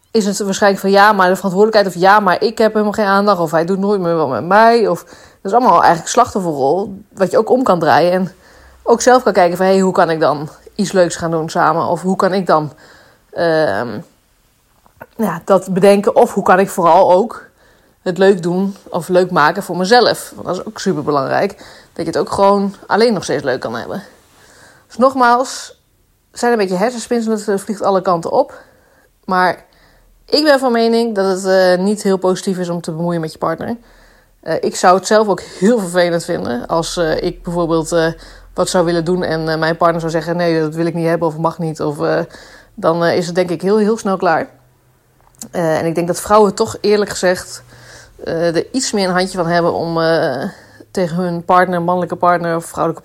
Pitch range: 170-200 Hz